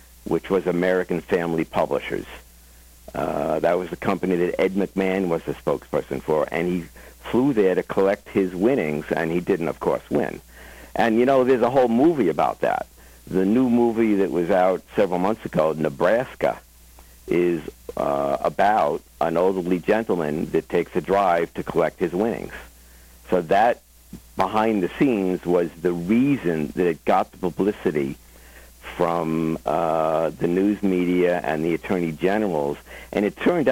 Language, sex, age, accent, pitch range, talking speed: English, male, 60-79, American, 65-95 Hz, 160 wpm